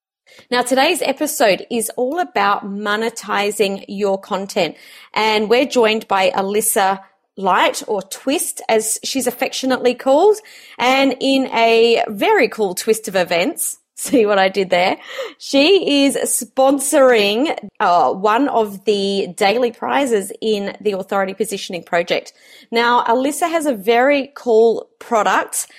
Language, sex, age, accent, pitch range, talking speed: English, female, 30-49, Australian, 205-270 Hz, 130 wpm